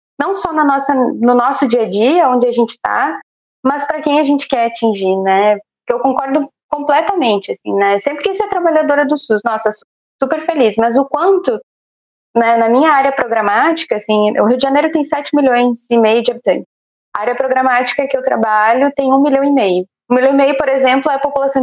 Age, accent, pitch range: 20-39, Brazilian, 230-285 Hz